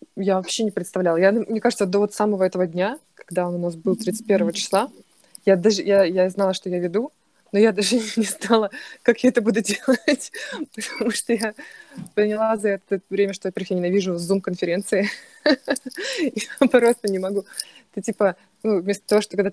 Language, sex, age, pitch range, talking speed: Russian, female, 20-39, 190-230 Hz, 185 wpm